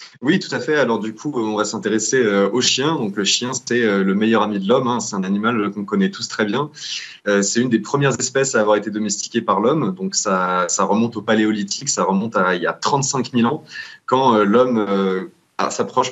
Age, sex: 20-39, male